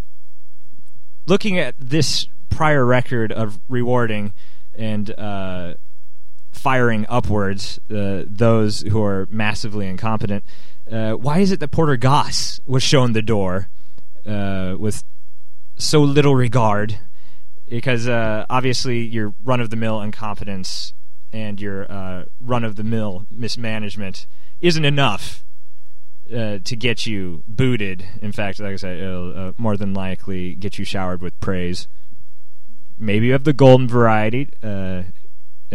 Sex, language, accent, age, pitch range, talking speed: male, English, American, 30-49, 100-130 Hz, 125 wpm